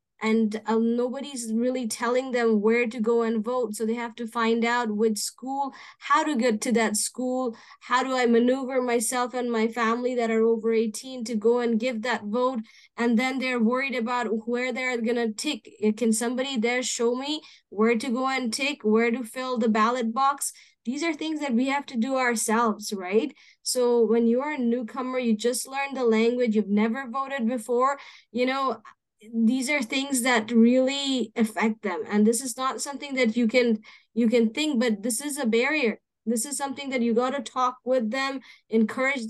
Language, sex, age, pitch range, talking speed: English, female, 20-39, 230-260 Hz, 195 wpm